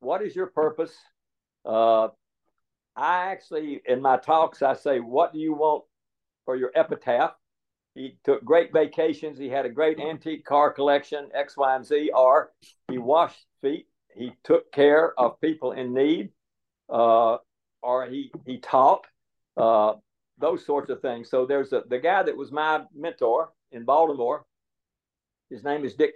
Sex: male